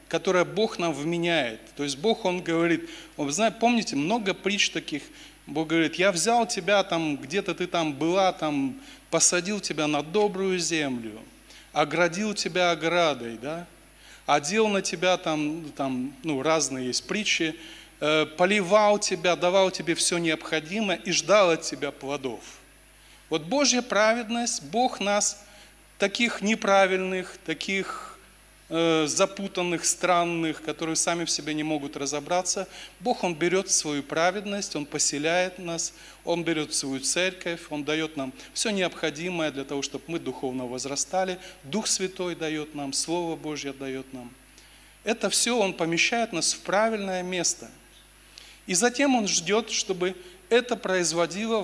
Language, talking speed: Russian, 135 wpm